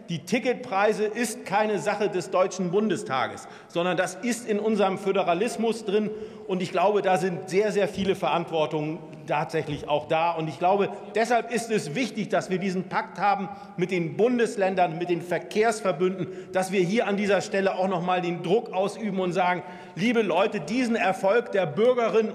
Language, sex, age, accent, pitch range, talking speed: German, male, 40-59, German, 175-210 Hz, 175 wpm